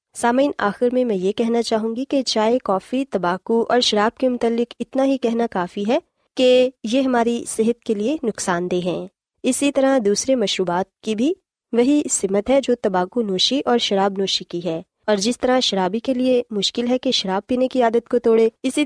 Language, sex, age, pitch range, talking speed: Urdu, female, 20-39, 200-255 Hz, 195 wpm